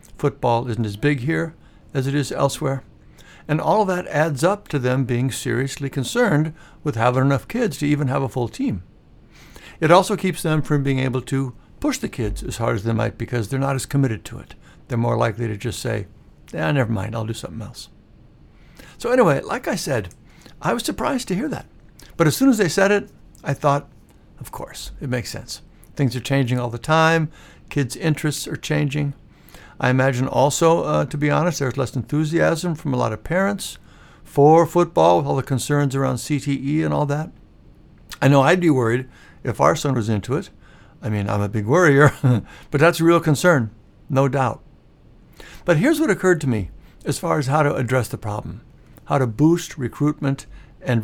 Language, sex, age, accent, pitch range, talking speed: English, male, 60-79, American, 120-155 Hz, 200 wpm